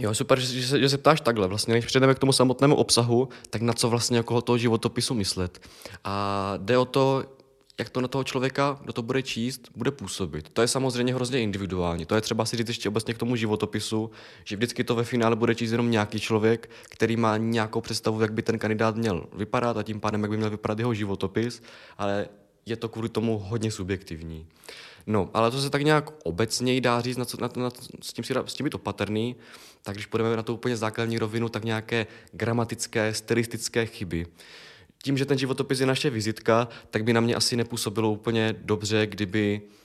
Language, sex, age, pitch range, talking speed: Czech, male, 20-39, 105-120 Hz, 210 wpm